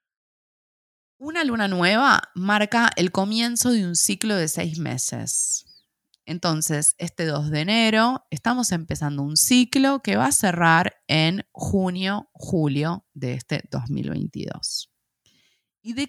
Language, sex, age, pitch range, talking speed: Spanish, female, 20-39, 145-195 Hz, 125 wpm